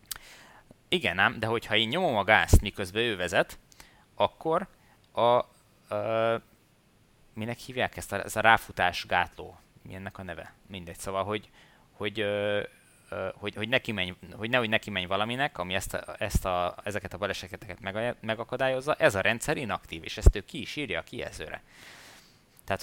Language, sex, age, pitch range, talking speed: Hungarian, male, 20-39, 90-115 Hz, 165 wpm